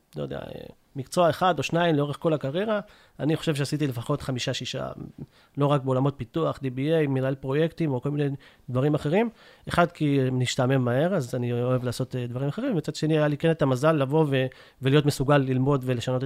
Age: 40-59